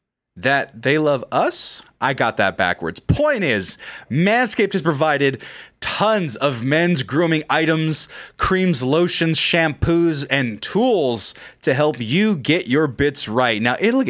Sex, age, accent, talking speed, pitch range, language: male, 20-39, American, 135 wpm, 125-190 Hz, English